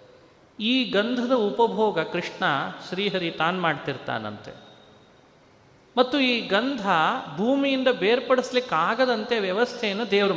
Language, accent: Kannada, native